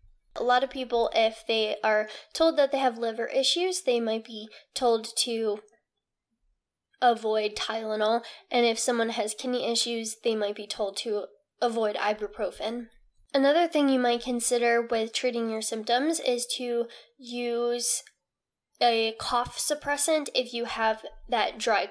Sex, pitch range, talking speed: female, 225-260 Hz, 145 wpm